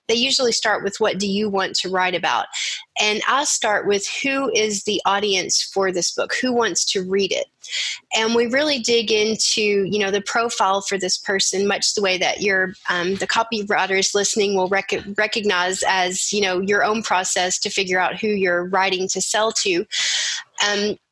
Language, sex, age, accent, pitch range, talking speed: English, female, 30-49, American, 190-220 Hz, 190 wpm